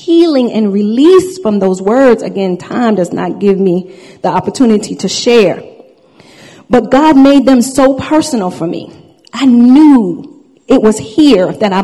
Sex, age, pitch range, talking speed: female, 40-59, 225-320 Hz, 155 wpm